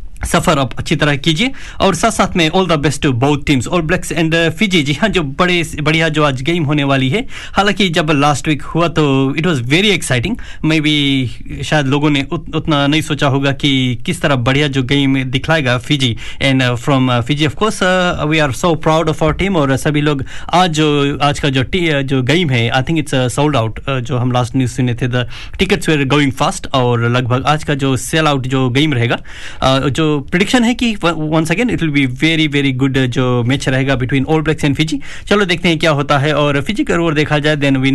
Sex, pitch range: male, 130-160 Hz